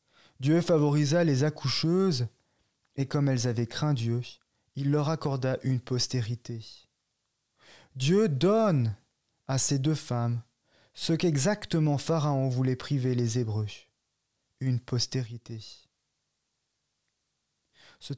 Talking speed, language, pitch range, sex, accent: 100 wpm, French, 120-155 Hz, male, French